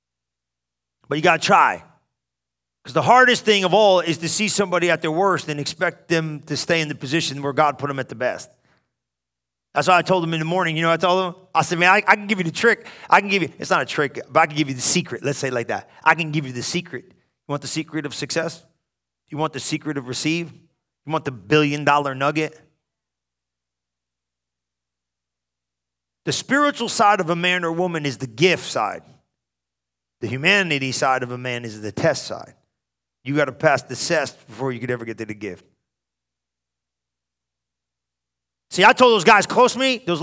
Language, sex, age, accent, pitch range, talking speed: English, male, 40-59, American, 115-180 Hz, 215 wpm